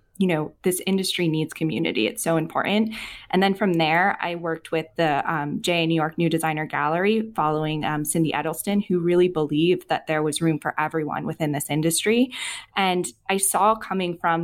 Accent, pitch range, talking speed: American, 160-185 Hz, 185 wpm